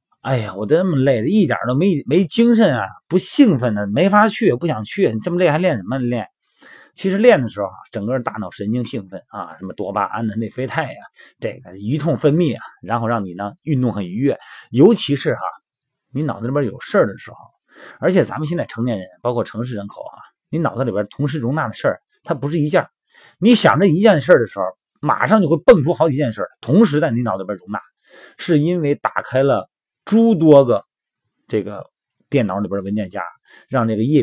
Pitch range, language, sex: 110-160 Hz, Chinese, male